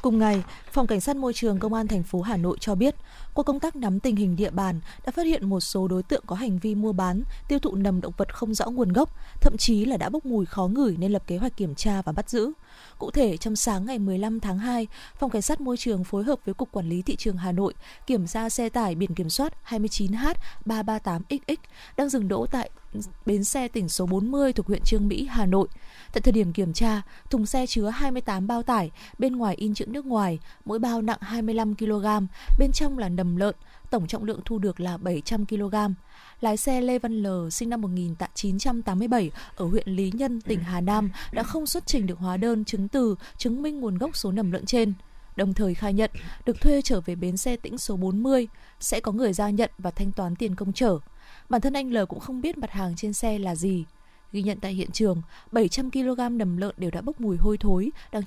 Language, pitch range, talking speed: Vietnamese, 195-245 Hz, 235 wpm